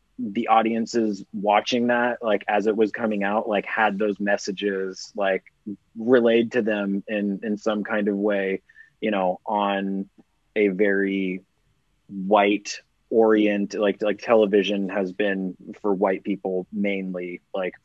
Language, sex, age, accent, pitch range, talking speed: English, male, 20-39, American, 100-110 Hz, 140 wpm